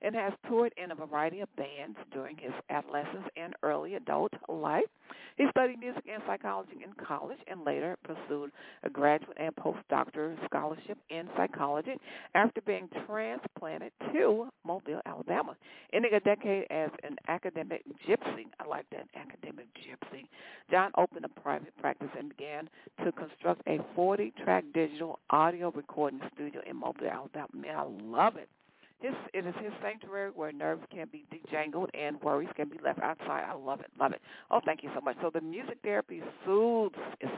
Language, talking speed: English, 165 wpm